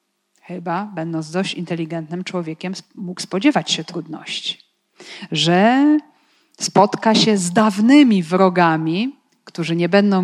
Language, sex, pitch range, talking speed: Polish, female, 175-225 Hz, 105 wpm